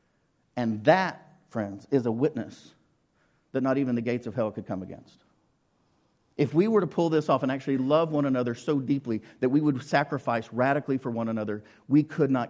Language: English